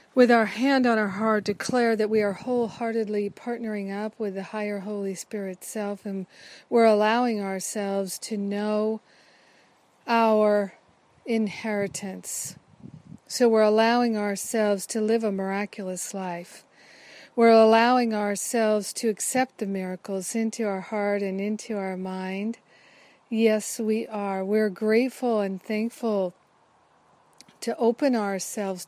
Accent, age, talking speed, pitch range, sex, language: American, 50-69, 125 wpm, 195-225 Hz, female, English